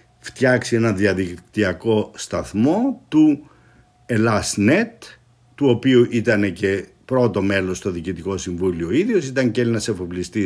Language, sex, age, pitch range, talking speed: Greek, male, 50-69, 100-130 Hz, 120 wpm